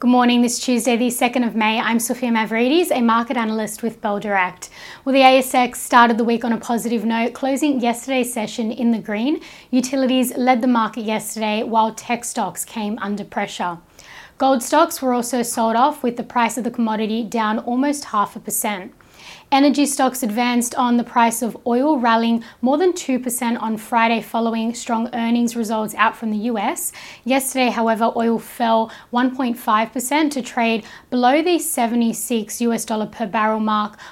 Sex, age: female, 10-29